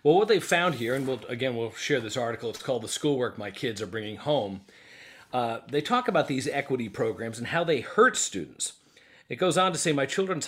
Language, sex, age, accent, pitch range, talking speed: English, male, 40-59, American, 120-160 Hz, 225 wpm